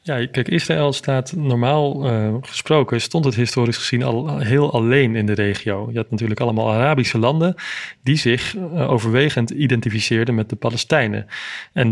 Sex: male